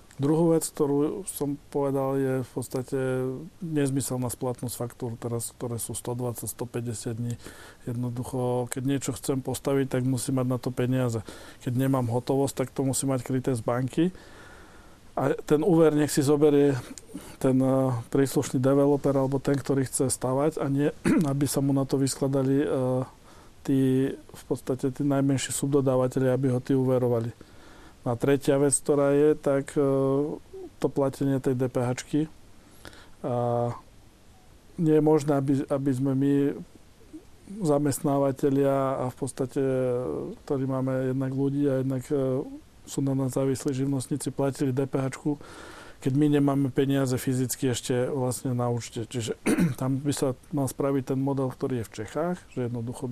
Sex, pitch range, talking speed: male, 125-140 Hz, 145 wpm